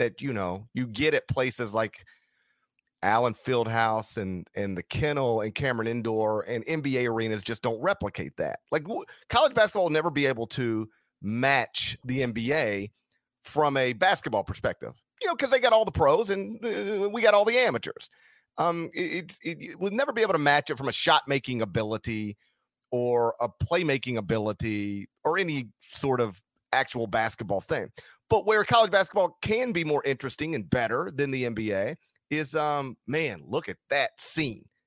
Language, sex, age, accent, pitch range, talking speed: English, male, 40-59, American, 115-165 Hz, 170 wpm